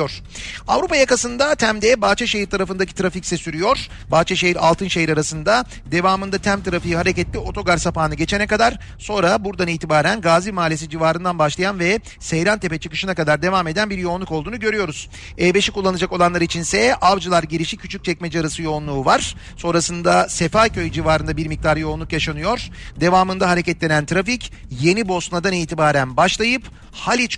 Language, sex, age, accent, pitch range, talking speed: Turkish, male, 40-59, native, 160-195 Hz, 130 wpm